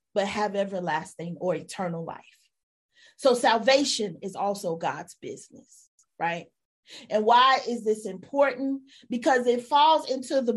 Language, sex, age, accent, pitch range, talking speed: English, female, 40-59, American, 235-300 Hz, 130 wpm